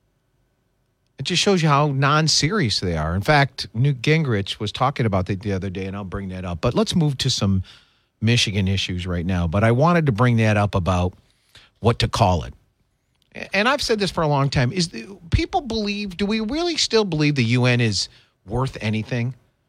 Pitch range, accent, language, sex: 110-160 Hz, American, English, male